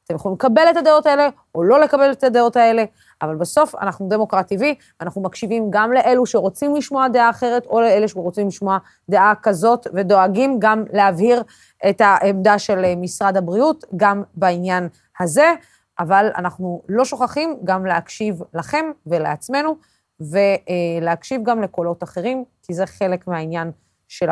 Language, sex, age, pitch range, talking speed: Hebrew, female, 30-49, 180-235 Hz, 145 wpm